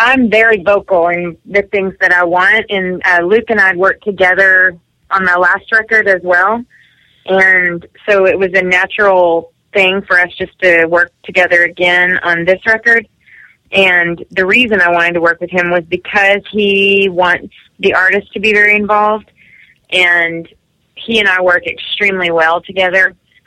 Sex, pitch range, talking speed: female, 175-200 Hz, 170 wpm